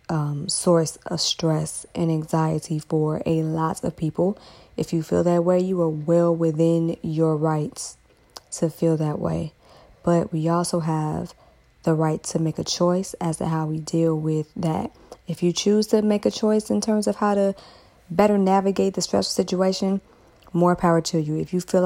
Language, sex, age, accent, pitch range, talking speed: English, female, 20-39, American, 160-185 Hz, 185 wpm